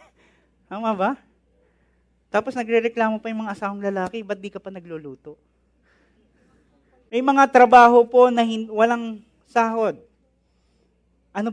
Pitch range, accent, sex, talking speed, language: 180-240 Hz, Filipino, male, 120 wpm, English